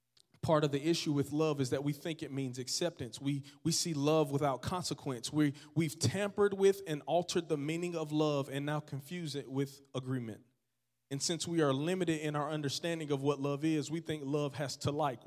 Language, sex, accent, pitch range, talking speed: English, male, American, 130-160 Hz, 210 wpm